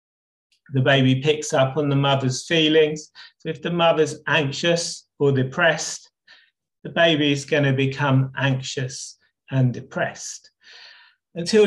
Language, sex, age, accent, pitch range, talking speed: English, male, 30-49, British, 140-165 Hz, 130 wpm